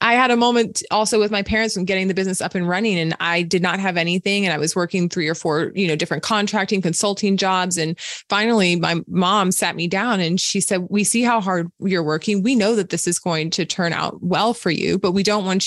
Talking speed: 255 wpm